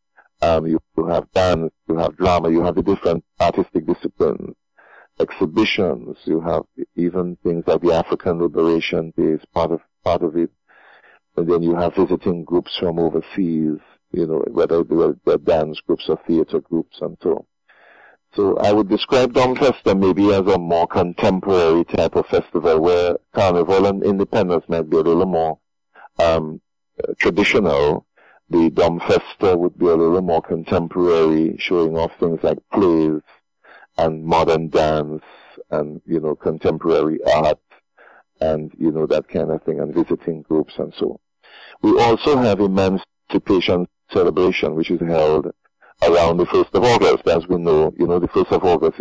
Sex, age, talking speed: male, 50-69, 165 wpm